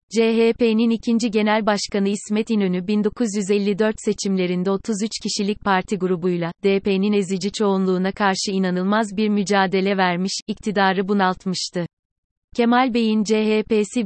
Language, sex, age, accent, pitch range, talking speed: Turkish, female, 30-49, native, 190-215 Hz, 105 wpm